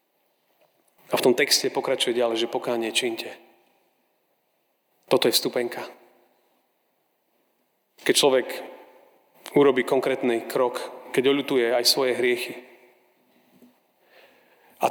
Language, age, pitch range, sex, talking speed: Slovak, 30-49, 115-130 Hz, male, 95 wpm